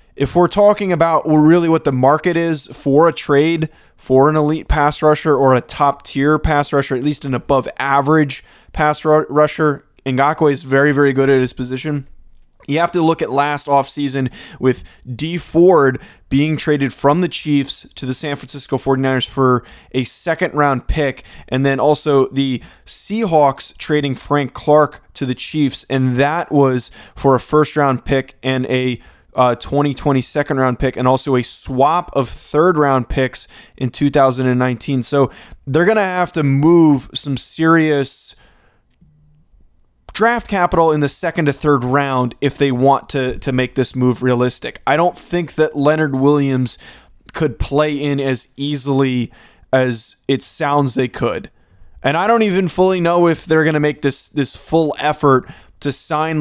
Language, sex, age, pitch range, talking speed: English, male, 20-39, 130-150 Hz, 165 wpm